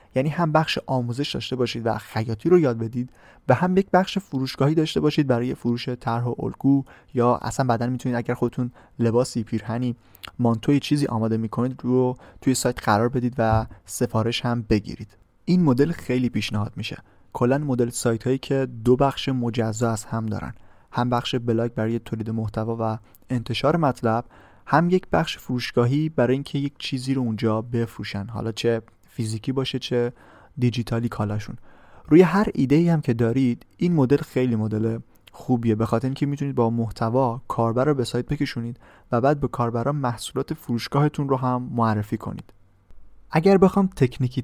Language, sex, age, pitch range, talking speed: Persian, male, 30-49, 115-135 Hz, 165 wpm